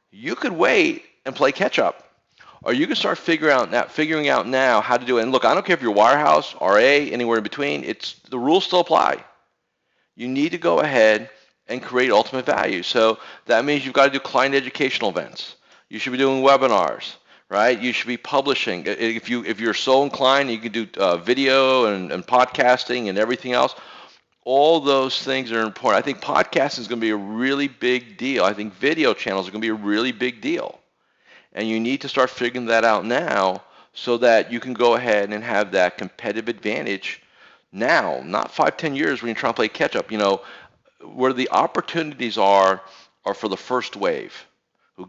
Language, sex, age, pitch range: English, male, 40-59, 115-135 Hz